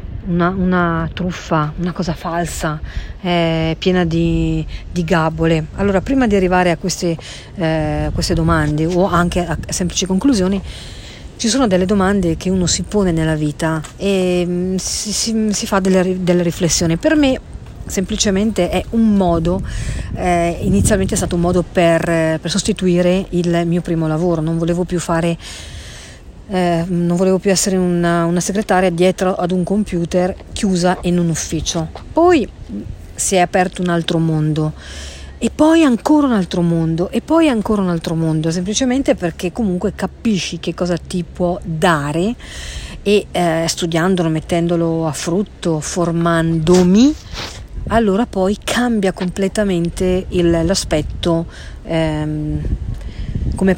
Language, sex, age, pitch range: Italian, female, 50-69, 165-190 Hz